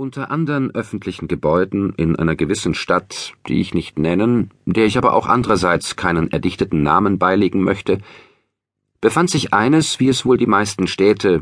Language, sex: German, male